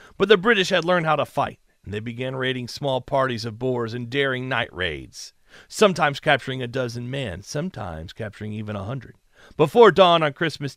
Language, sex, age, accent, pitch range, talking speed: English, male, 40-59, American, 115-155 Hz, 190 wpm